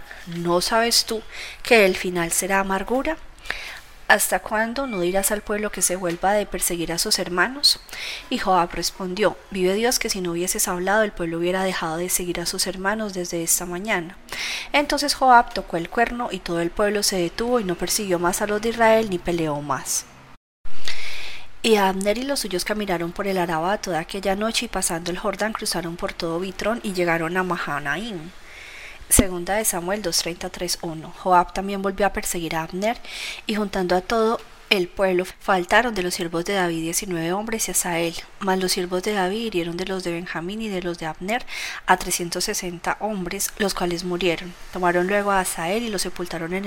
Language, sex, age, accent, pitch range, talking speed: Spanish, female, 30-49, Colombian, 175-215 Hz, 190 wpm